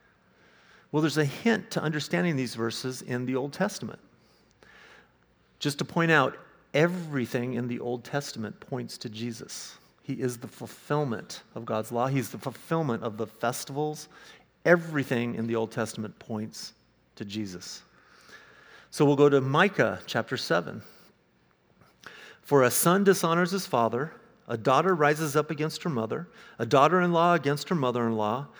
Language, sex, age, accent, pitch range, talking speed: English, male, 50-69, American, 115-155 Hz, 145 wpm